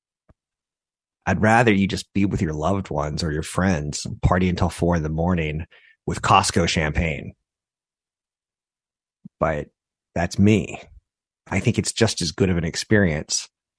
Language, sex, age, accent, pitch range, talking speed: English, male, 30-49, American, 85-110 Hz, 150 wpm